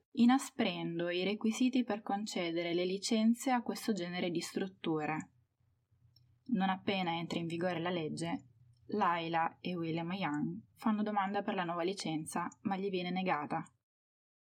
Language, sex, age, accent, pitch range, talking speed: Italian, female, 20-39, native, 170-225 Hz, 135 wpm